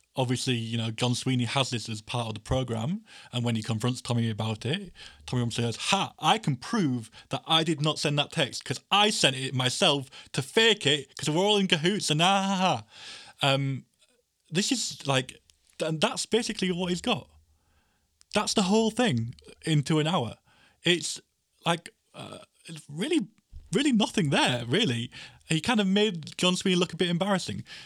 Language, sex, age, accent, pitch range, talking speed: English, male, 20-39, British, 120-175 Hz, 180 wpm